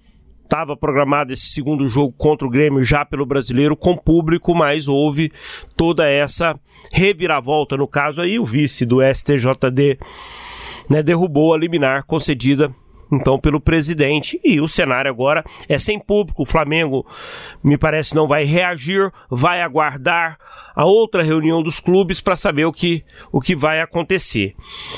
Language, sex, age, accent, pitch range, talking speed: Portuguese, male, 40-59, Brazilian, 145-195 Hz, 150 wpm